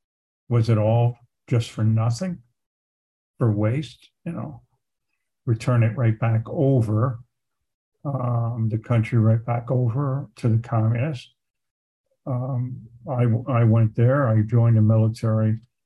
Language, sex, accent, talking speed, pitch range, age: English, male, American, 125 wpm, 105-125 Hz, 50-69